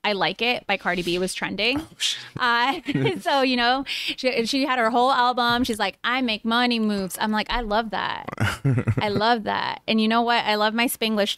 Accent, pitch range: American, 190-230 Hz